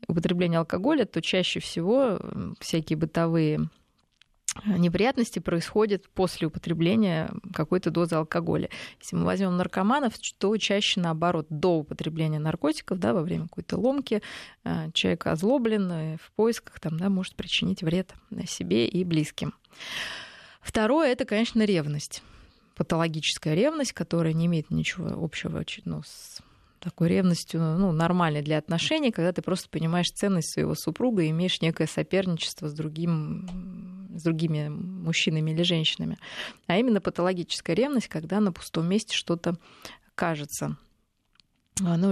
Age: 20-39